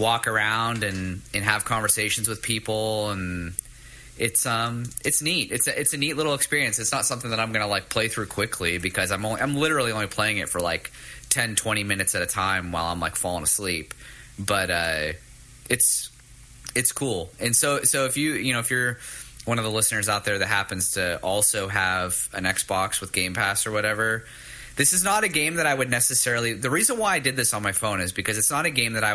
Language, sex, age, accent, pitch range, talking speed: English, male, 20-39, American, 100-125 Hz, 225 wpm